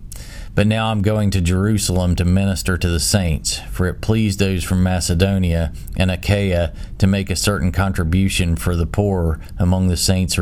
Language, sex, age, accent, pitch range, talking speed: English, male, 40-59, American, 85-100 Hz, 185 wpm